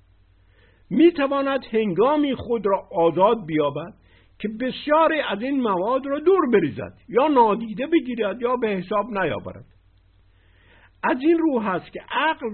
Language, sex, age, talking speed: Persian, male, 60-79, 135 wpm